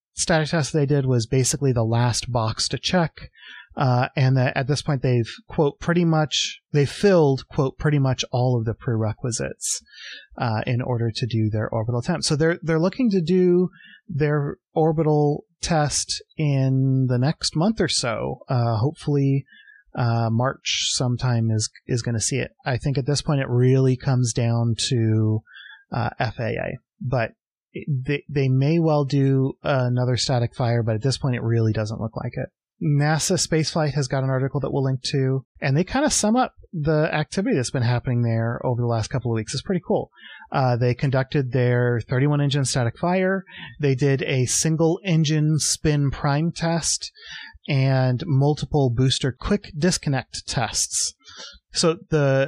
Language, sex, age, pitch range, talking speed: English, male, 30-49, 125-155 Hz, 170 wpm